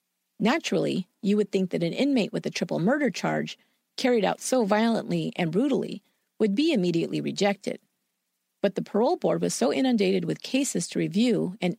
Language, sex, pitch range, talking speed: English, female, 185-245 Hz, 175 wpm